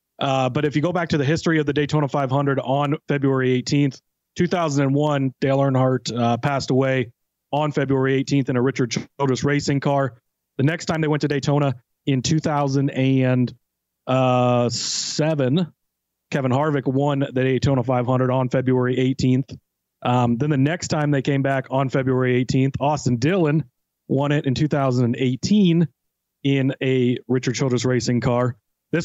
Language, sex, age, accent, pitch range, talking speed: English, male, 30-49, American, 125-145 Hz, 150 wpm